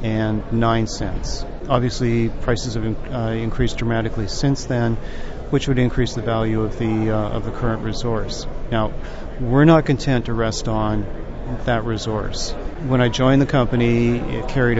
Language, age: English, 40-59